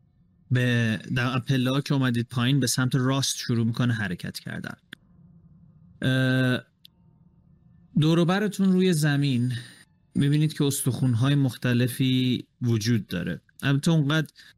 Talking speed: 100 wpm